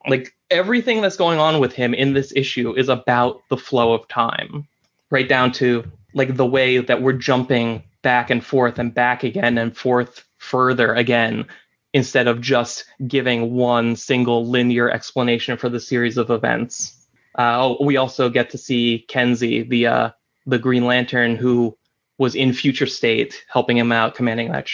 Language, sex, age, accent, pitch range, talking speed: English, male, 20-39, American, 120-140 Hz, 170 wpm